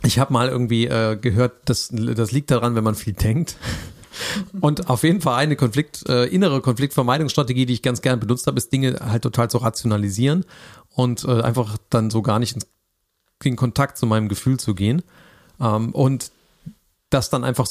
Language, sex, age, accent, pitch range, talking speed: German, male, 40-59, German, 110-135 Hz, 180 wpm